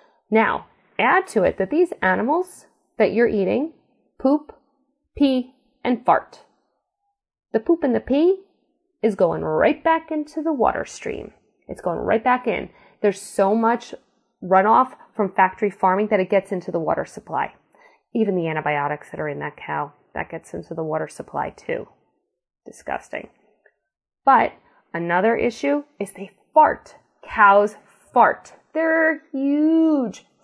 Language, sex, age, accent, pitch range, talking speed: English, female, 30-49, American, 175-270 Hz, 145 wpm